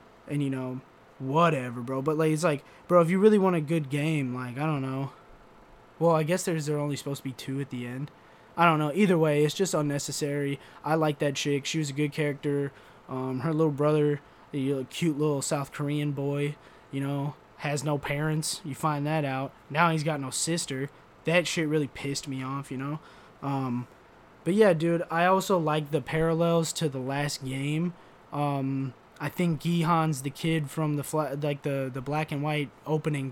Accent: American